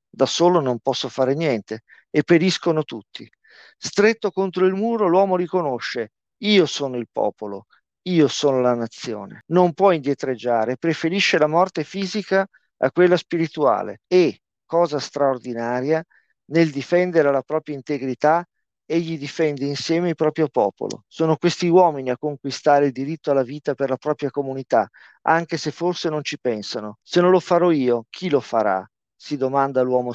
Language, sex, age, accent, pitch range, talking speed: Italian, male, 50-69, native, 140-185 Hz, 155 wpm